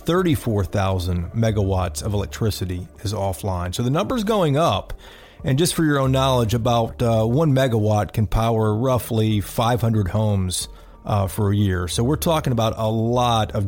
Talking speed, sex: 160 wpm, male